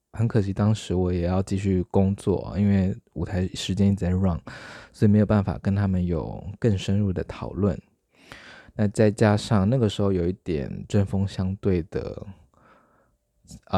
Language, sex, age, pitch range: Chinese, male, 20-39, 95-125 Hz